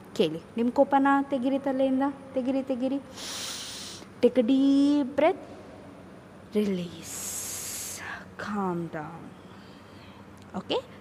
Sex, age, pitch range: female, 20-39, 180-270 Hz